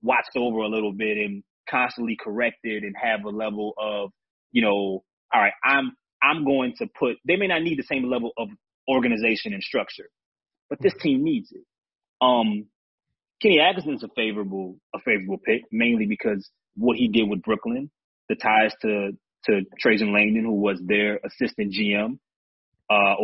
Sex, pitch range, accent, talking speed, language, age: male, 105-140 Hz, American, 170 wpm, English, 30-49